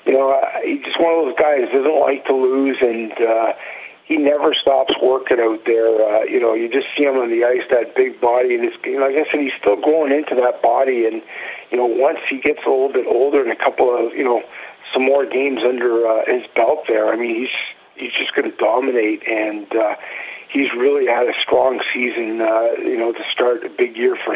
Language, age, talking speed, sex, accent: English, 50-69, 235 wpm, male, American